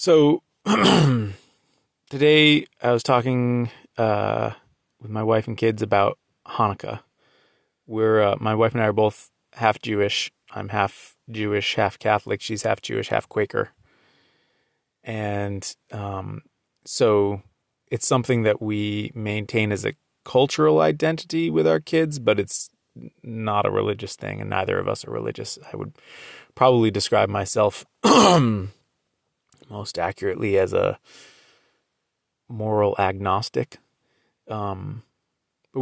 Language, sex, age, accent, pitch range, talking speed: English, male, 20-39, American, 105-130 Hz, 120 wpm